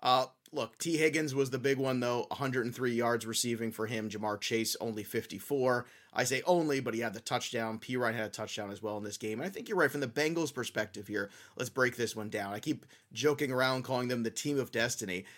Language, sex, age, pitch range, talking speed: English, male, 30-49, 115-150 Hz, 240 wpm